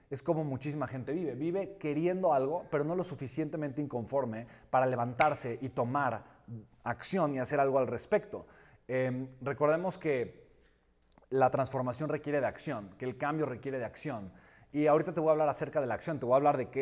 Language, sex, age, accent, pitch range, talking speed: Spanish, male, 40-59, Mexican, 130-160 Hz, 190 wpm